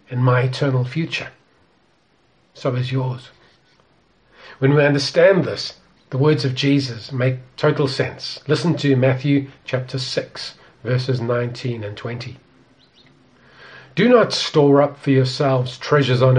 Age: 40-59